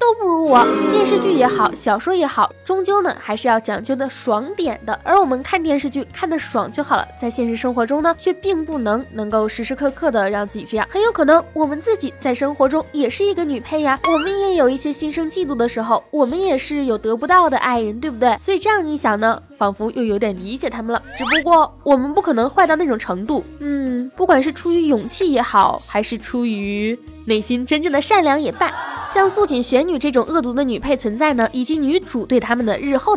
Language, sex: Chinese, female